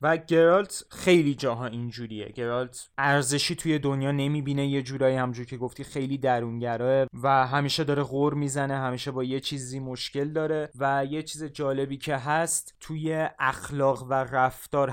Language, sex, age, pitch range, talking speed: Persian, male, 20-39, 115-140 Hz, 155 wpm